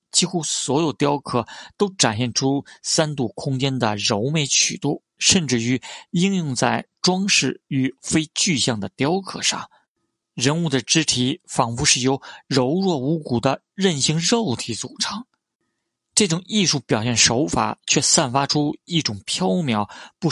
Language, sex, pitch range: Chinese, male, 125-170 Hz